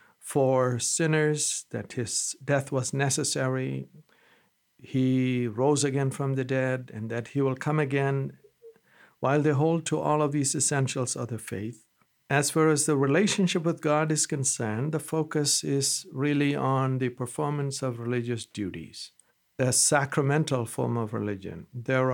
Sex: male